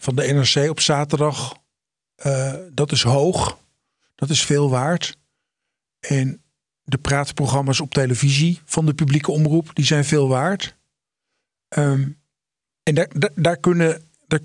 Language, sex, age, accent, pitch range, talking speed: Dutch, male, 50-69, Dutch, 135-160 Hz, 120 wpm